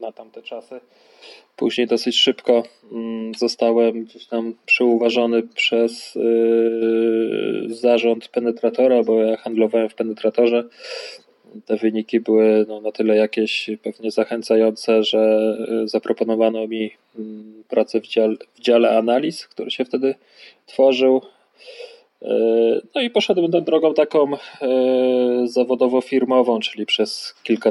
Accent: native